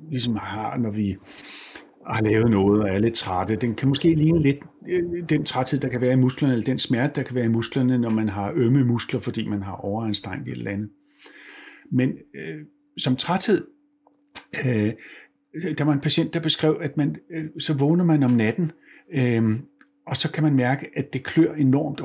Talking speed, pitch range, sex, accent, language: 185 wpm, 115-160 Hz, male, native, Danish